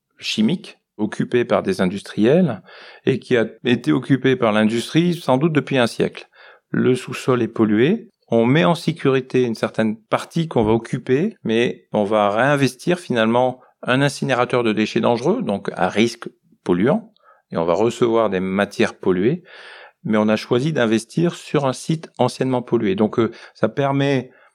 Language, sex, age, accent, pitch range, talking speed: English, male, 40-59, French, 115-145 Hz, 160 wpm